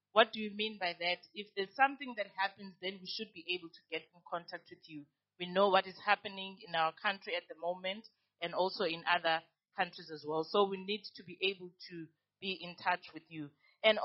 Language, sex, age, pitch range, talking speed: English, female, 30-49, 175-210 Hz, 225 wpm